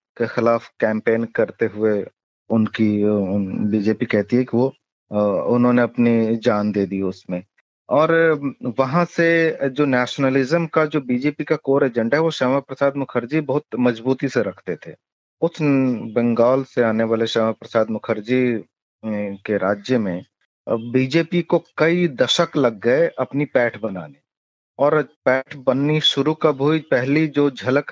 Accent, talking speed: native, 145 wpm